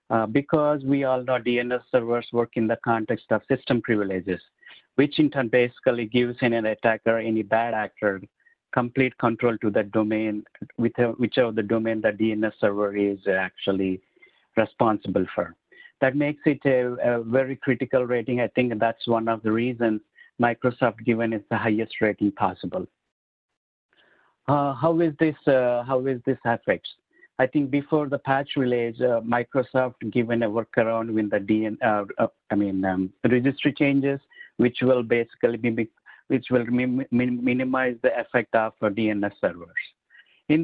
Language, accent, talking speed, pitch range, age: English, Indian, 160 wpm, 110-135 Hz, 50-69